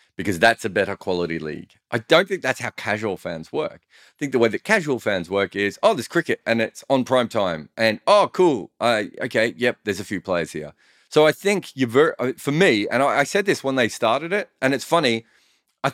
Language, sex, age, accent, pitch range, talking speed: English, male, 30-49, Australian, 90-130 Hz, 230 wpm